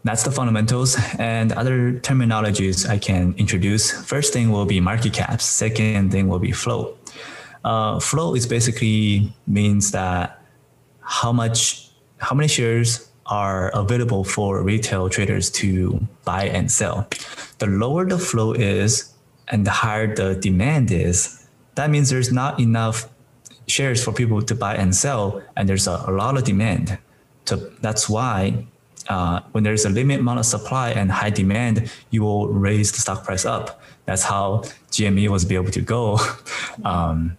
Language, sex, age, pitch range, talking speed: English, male, 20-39, 100-125 Hz, 160 wpm